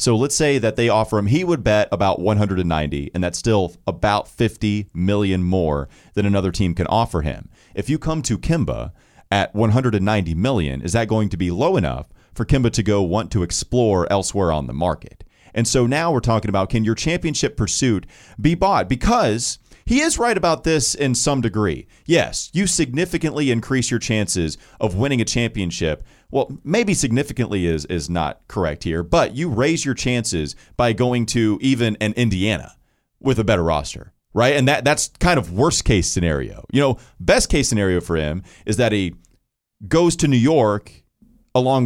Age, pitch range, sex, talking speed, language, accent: 30-49, 95-125 Hz, male, 180 wpm, English, American